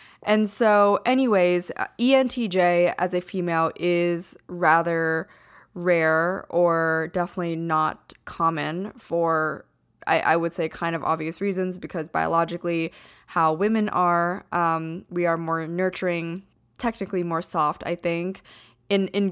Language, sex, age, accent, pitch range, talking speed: English, female, 20-39, American, 165-195 Hz, 125 wpm